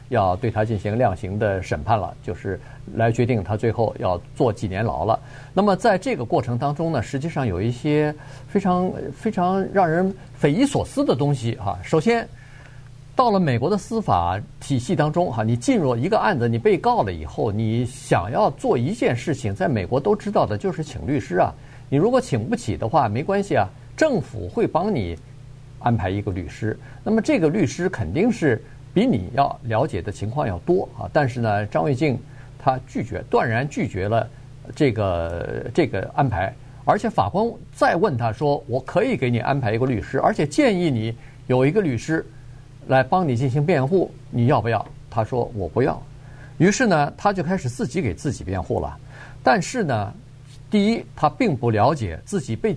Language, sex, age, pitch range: Chinese, male, 50-69, 115-170 Hz